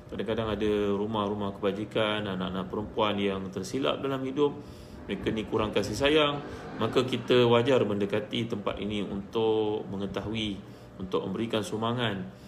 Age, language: 30-49, Malay